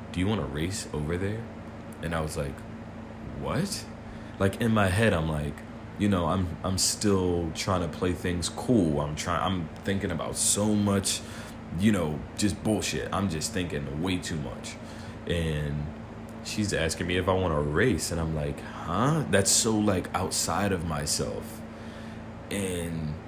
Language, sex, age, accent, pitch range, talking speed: English, male, 20-39, American, 85-110 Hz, 160 wpm